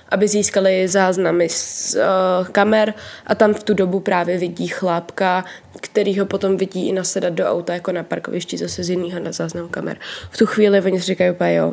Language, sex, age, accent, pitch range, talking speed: Czech, female, 20-39, native, 180-210 Hz, 190 wpm